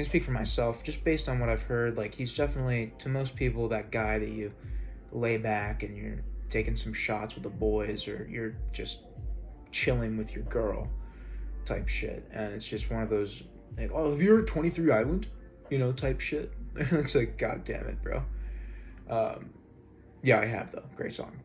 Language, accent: English, American